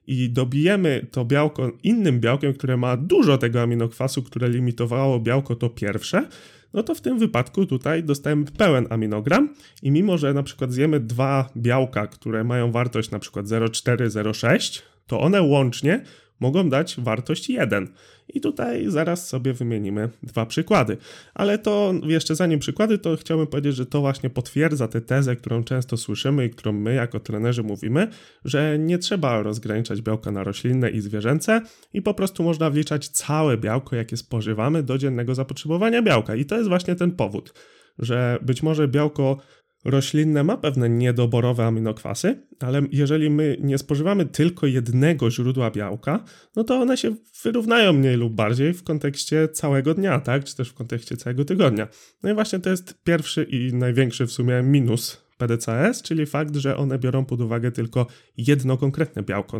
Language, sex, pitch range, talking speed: Polish, male, 120-160 Hz, 165 wpm